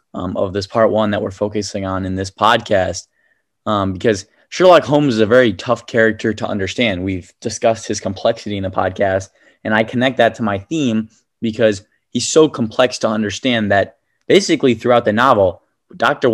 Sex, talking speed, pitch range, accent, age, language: male, 185 wpm, 100-120 Hz, American, 20-39, English